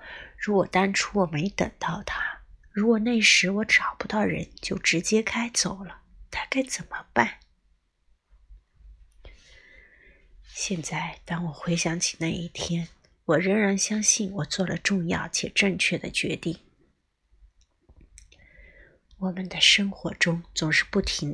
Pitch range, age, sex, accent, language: 160-205 Hz, 30-49, female, native, Chinese